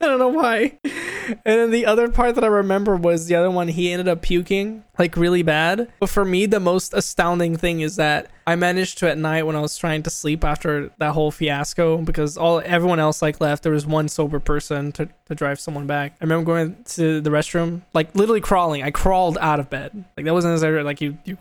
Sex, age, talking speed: male, 10-29, 240 wpm